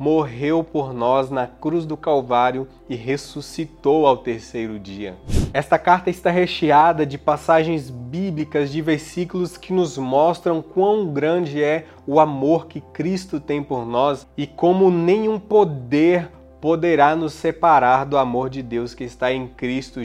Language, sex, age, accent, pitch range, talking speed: Portuguese, male, 20-39, Brazilian, 130-165 Hz, 145 wpm